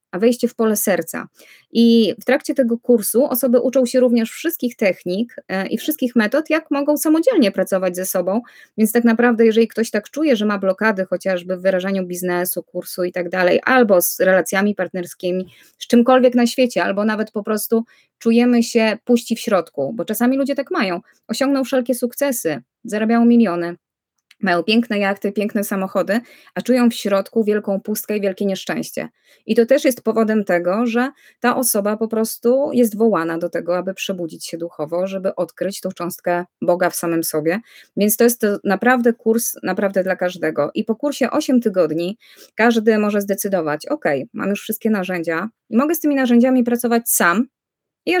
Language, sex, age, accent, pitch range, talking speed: Polish, female, 20-39, native, 185-240 Hz, 175 wpm